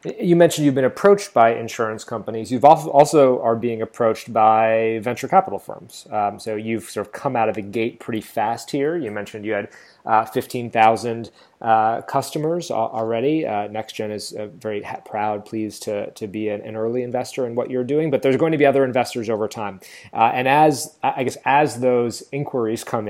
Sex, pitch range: male, 110-135 Hz